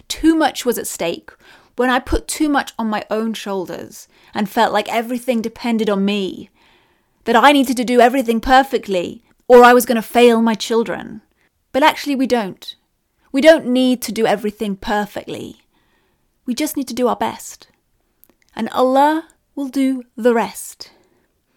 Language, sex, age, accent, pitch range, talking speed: English, female, 30-49, British, 220-270 Hz, 165 wpm